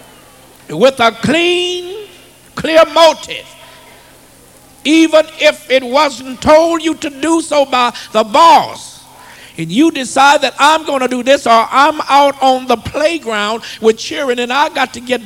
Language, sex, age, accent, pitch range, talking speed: English, male, 60-79, American, 230-310 Hz, 155 wpm